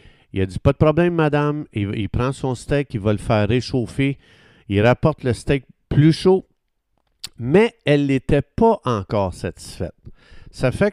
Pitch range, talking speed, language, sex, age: 110-150 Hz, 170 wpm, French, male, 50-69